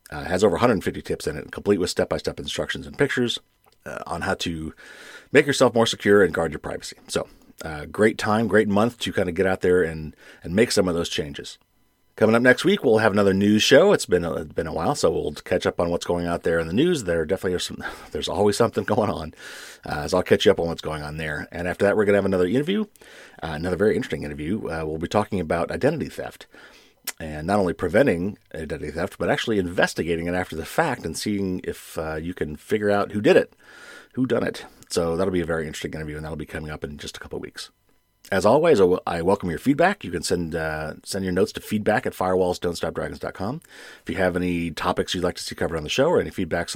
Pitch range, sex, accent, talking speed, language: 80-105 Hz, male, American, 245 wpm, English